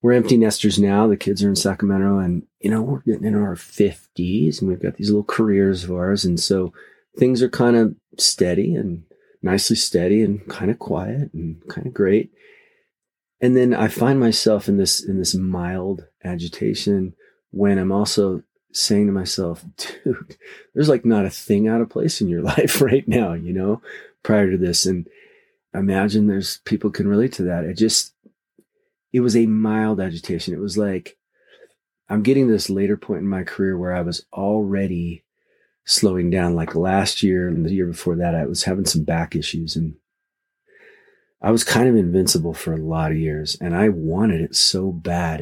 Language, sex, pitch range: English, male, 85-110 Hz